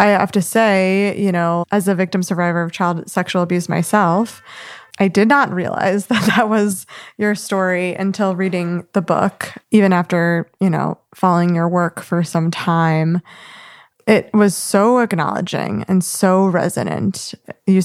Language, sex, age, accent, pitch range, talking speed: English, female, 20-39, American, 180-205 Hz, 155 wpm